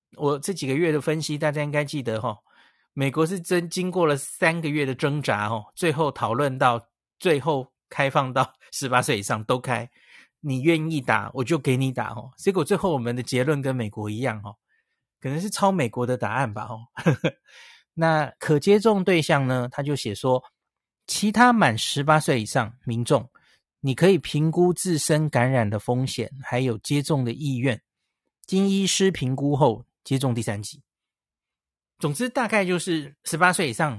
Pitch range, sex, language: 125-170 Hz, male, Chinese